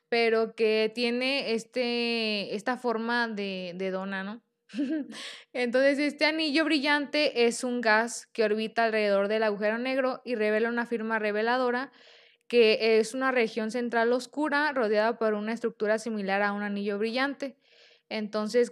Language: Spanish